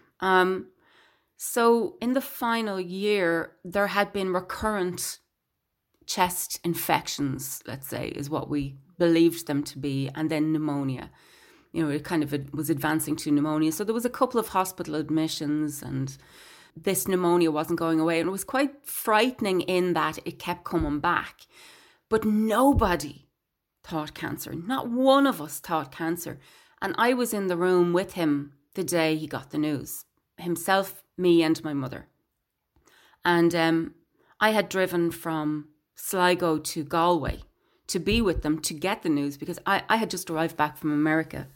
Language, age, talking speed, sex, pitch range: English, 30-49, 165 wpm, female, 150-185 Hz